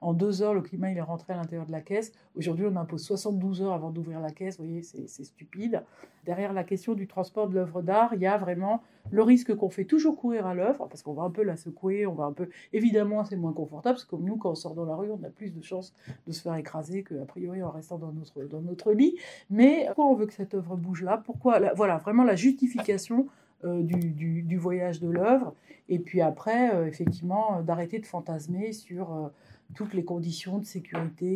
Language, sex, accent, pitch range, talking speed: French, female, French, 165-205 Hz, 240 wpm